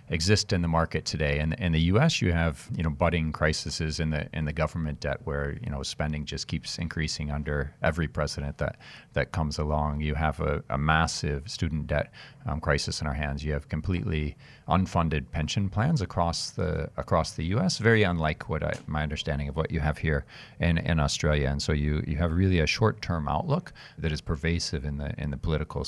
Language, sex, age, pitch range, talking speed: English, male, 40-59, 75-90 Hz, 210 wpm